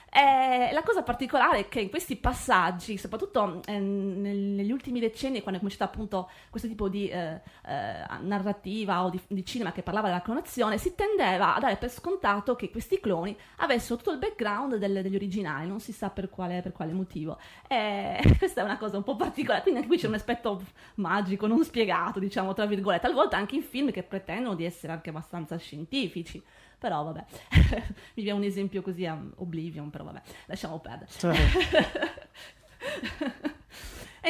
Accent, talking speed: native, 180 wpm